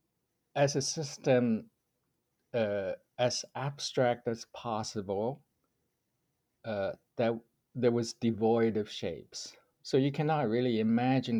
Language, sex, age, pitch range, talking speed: English, male, 50-69, 95-120 Hz, 105 wpm